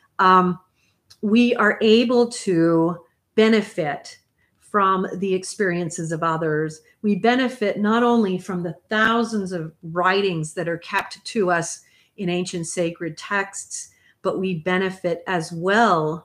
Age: 40-59